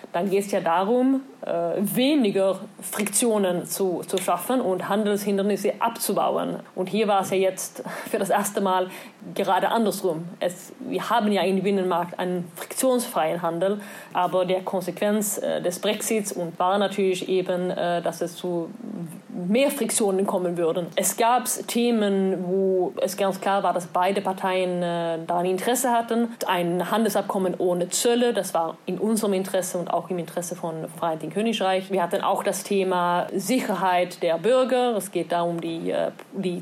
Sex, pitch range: female, 175-205 Hz